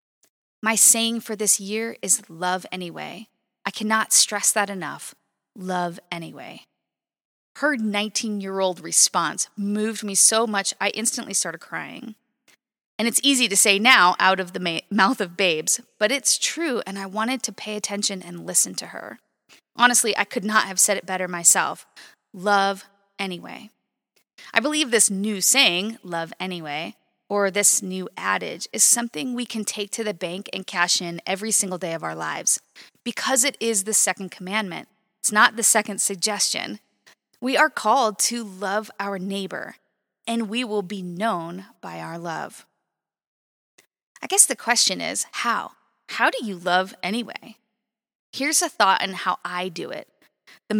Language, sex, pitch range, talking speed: English, female, 190-230 Hz, 165 wpm